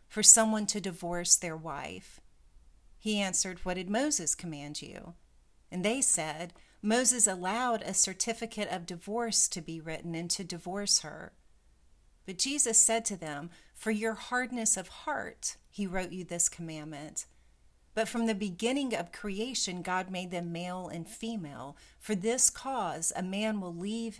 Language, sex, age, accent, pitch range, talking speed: English, female, 40-59, American, 160-210 Hz, 155 wpm